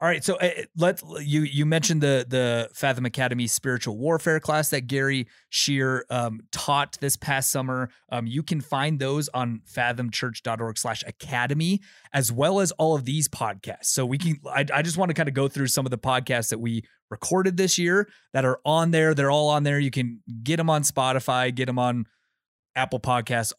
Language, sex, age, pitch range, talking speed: English, male, 30-49, 120-150 Hz, 195 wpm